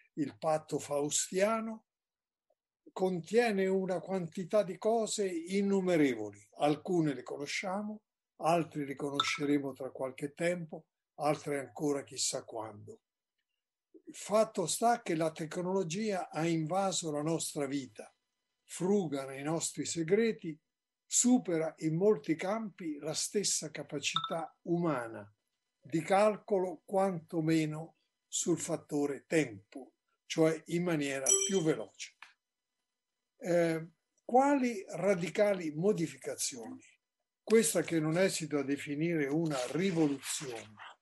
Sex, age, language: male, 50-69, Italian